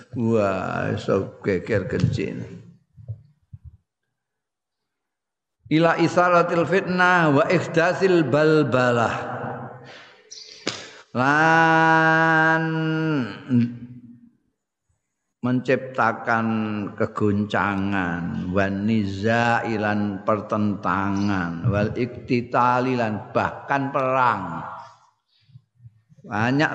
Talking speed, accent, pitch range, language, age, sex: 35 wpm, native, 110-145 Hz, Indonesian, 50-69, male